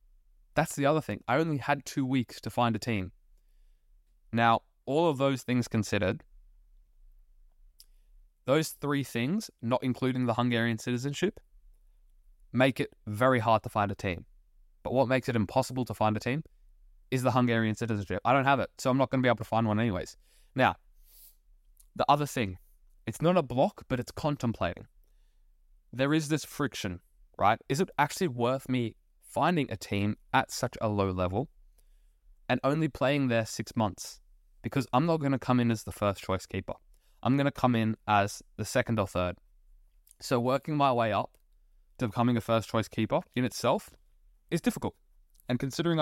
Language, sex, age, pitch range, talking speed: English, male, 20-39, 100-135 Hz, 180 wpm